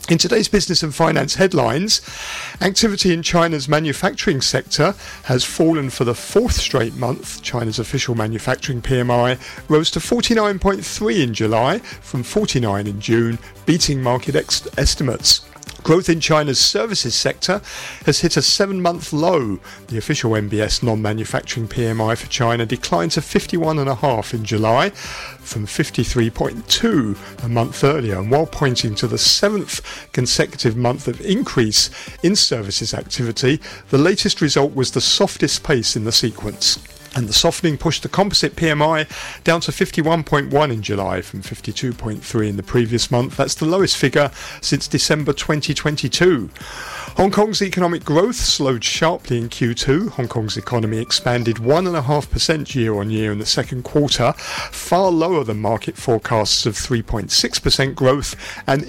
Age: 50-69